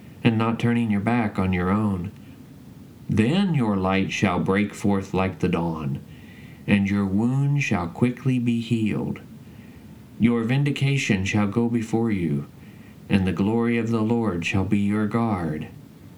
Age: 40-59